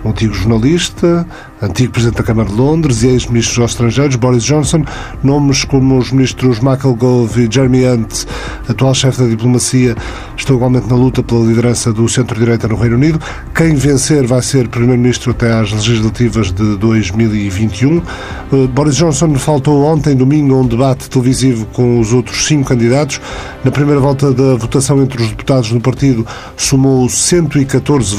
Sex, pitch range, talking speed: male, 120-140 Hz, 160 wpm